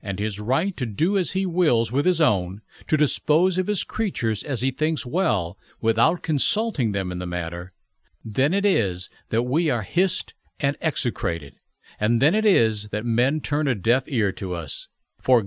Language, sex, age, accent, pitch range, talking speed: English, male, 60-79, American, 105-155 Hz, 185 wpm